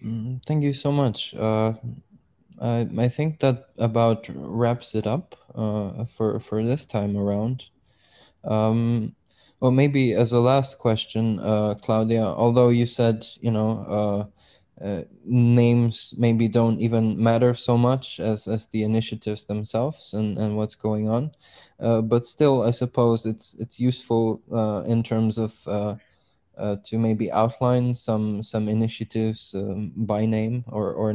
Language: English